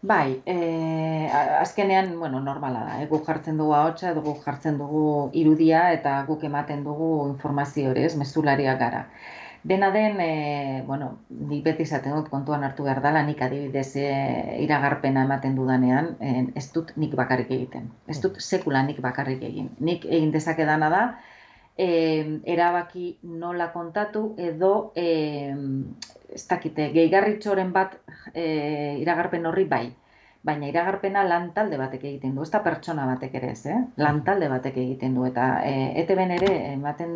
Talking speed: 145 wpm